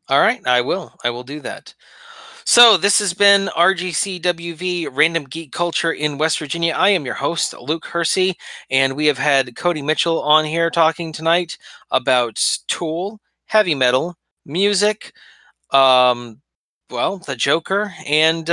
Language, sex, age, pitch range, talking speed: English, male, 30-49, 130-170 Hz, 145 wpm